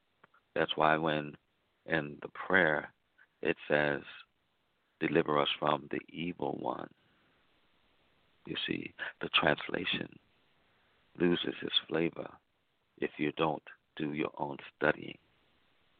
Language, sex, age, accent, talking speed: English, male, 60-79, American, 105 wpm